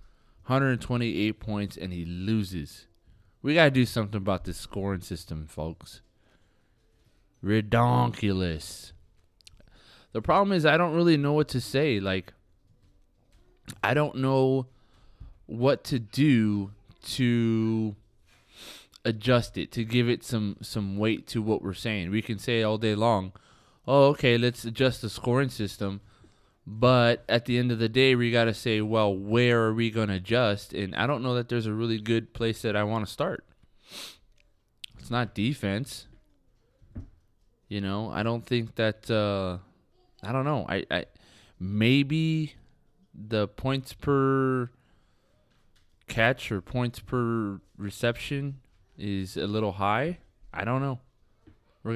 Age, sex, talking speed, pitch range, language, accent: 20-39, male, 145 wpm, 100-125 Hz, English, American